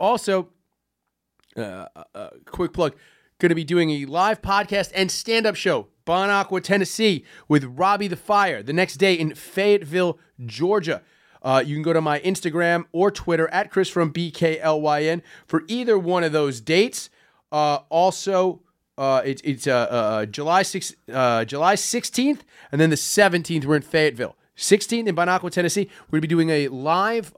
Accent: American